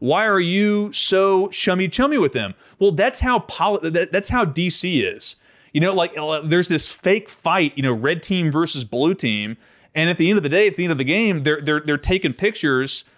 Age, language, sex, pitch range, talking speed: 30-49, English, male, 130-175 Hz, 225 wpm